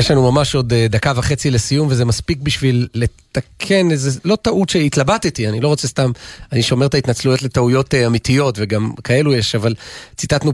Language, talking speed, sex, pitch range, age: Hebrew, 170 wpm, male, 120-155 Hz, 40-59